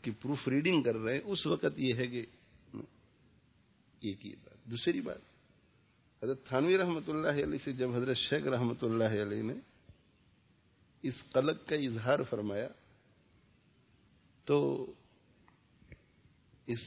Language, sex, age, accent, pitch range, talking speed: English, male, 50-69, Indian, 110-140 Hz, 115 wpm